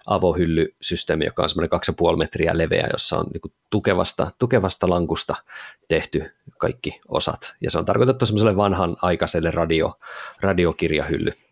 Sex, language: male, Finnish